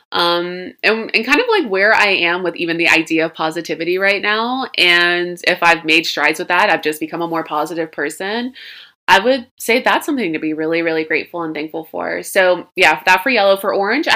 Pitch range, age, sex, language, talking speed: 175-220 Hz, 20-39, female, English, 215 wpm